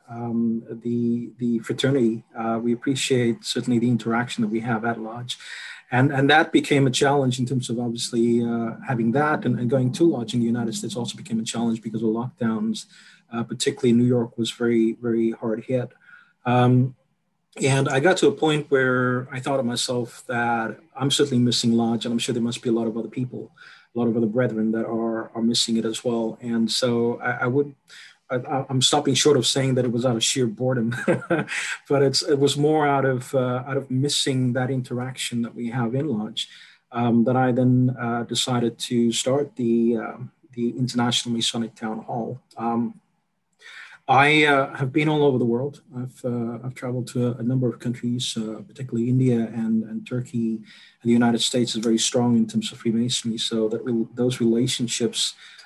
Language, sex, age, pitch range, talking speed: English, male, 30-49, 115-130 Hz, 200 wpm